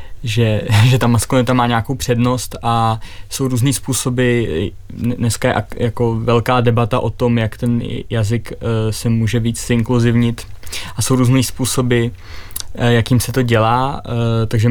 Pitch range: 105-120 Hz